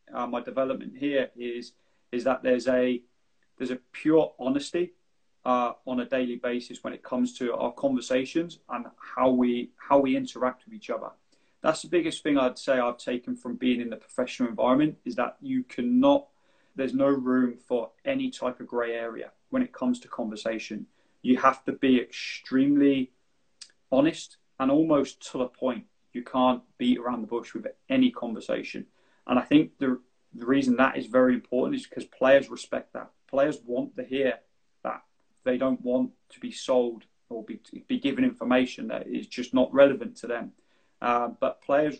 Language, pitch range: English, 125-175 Hz